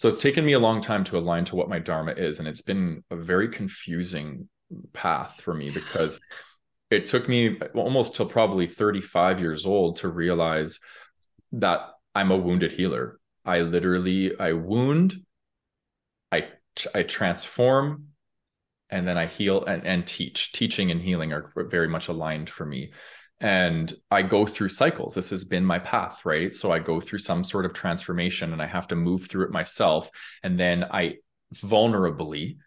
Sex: male